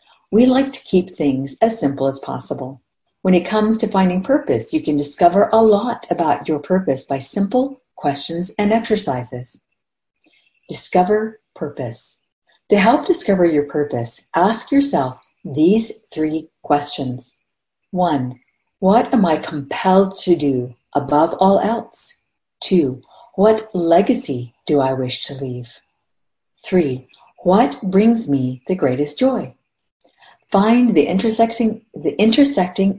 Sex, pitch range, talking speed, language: female, 145-220 Hz, 125 wpm, English